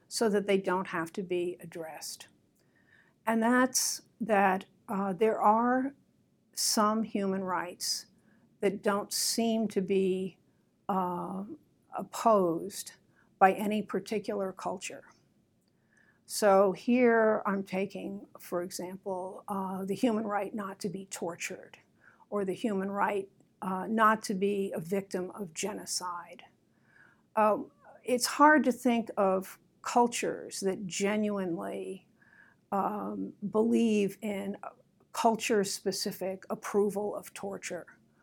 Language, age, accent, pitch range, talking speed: English, 60-79, American, 190-220 Hz, 110 wpm